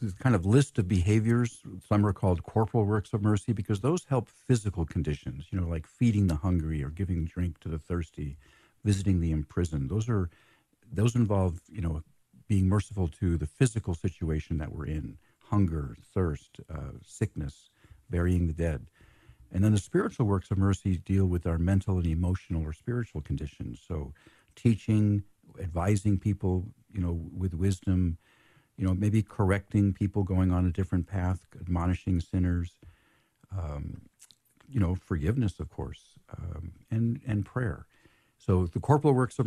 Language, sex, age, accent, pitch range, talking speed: English, male, 50-69, American, 85-110 Hz, 160 wpm